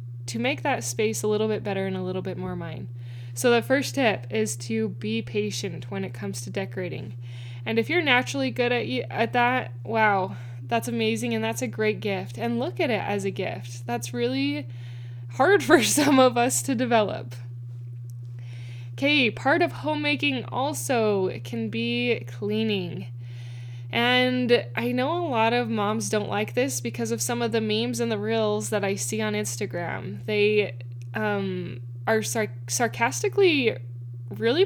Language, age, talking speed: English, 10-29, 170 wpm